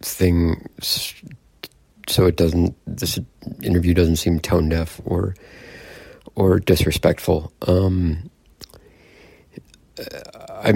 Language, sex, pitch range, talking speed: English, male, 85-95 Hz, 85 wpm